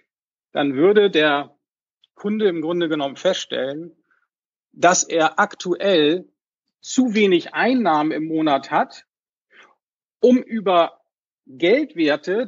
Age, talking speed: 50-69, 95 wpm